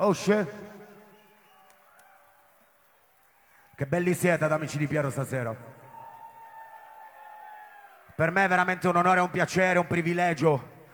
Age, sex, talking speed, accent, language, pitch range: 30-49, male, 110 wpm, native, Italian, 145-180 Hz